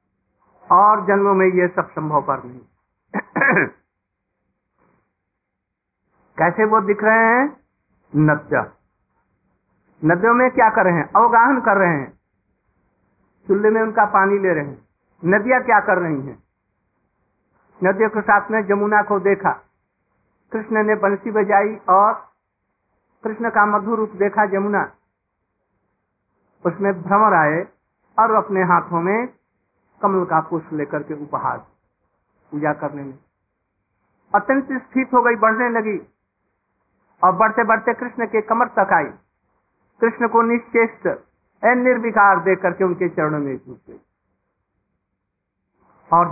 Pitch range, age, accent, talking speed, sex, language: 145-215 Hz, 60-79, native, 125 wpm, male, Hindi